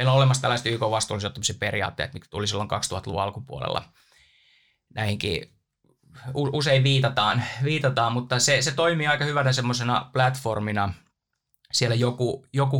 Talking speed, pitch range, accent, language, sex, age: 115 wpm, 105-135 Hz, native, Finnish, male, 20-39